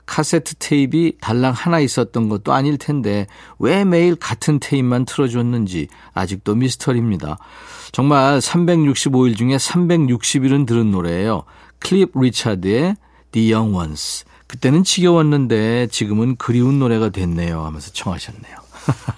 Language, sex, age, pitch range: Korean, male, 50-69, 105-150 Hz